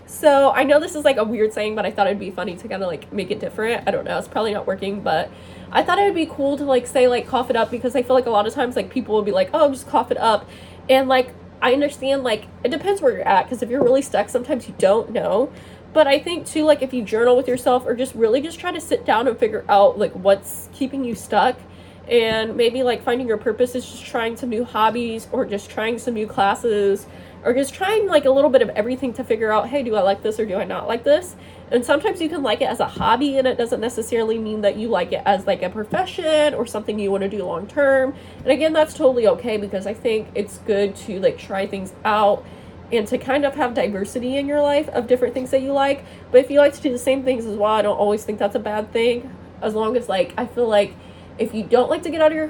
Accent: American